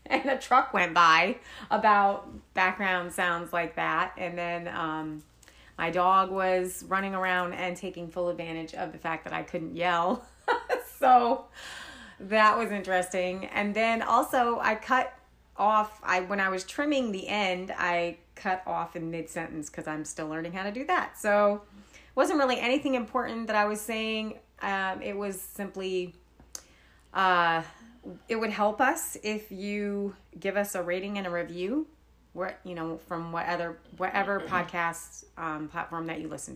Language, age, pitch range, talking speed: English, 30-49, 170-220 Hz, 160 wpm